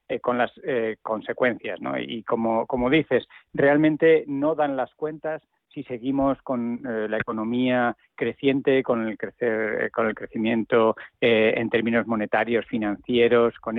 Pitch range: 115-140 Hz